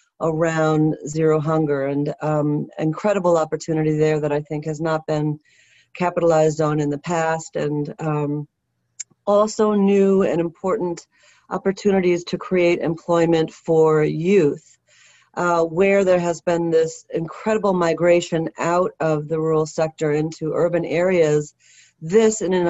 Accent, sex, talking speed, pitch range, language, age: American, female, 130 wpm, 155-195 Hz, English, 40-59